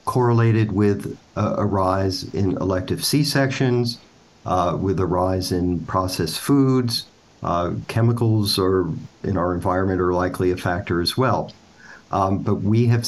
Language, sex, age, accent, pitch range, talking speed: English, male, 50-69, American, 95-120 Hz, 140 wpm